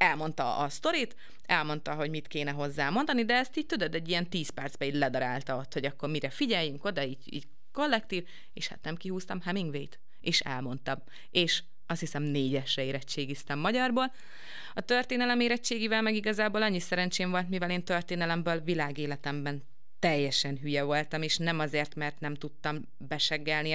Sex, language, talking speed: female, Hungarian, 160 wpm